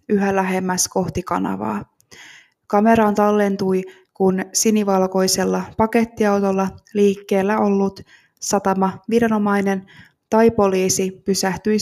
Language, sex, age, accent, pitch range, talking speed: Finnish, female, 20-39, native, 185-210 Hz, 80 wpm